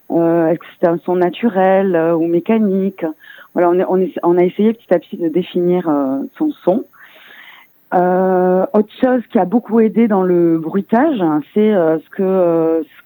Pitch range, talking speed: 175-225 Hz, 200 wpm